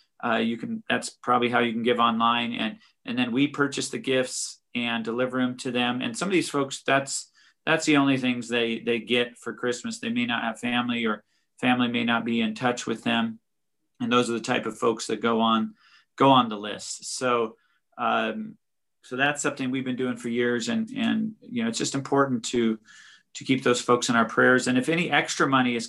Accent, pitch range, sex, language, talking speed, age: American, 120-155 Hz, male, English, 220 wpm, 40-59